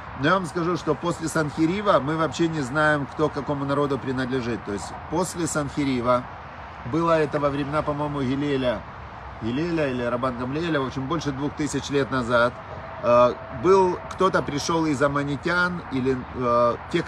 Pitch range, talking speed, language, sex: 130-160 Hz, 150 wpm, Russian, male